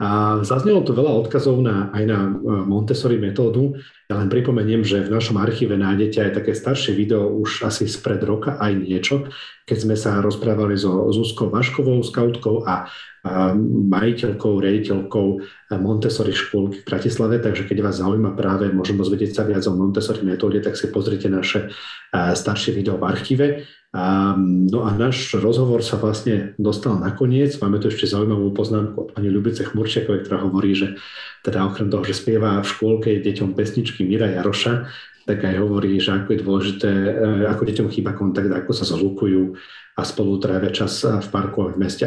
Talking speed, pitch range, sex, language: 170 wpm, 95-110 Hz, male, Slovak